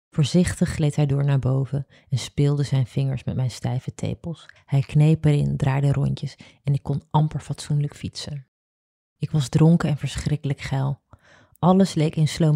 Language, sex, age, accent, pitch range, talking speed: Dutch, female, 30-49, Dutch, 130-155 Hz, 165 wpm